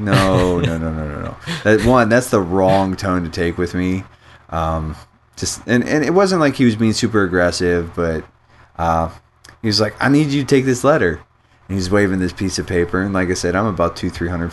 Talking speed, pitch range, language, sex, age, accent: 225 wpm, 85-110 Hz, English, male, 20-39, American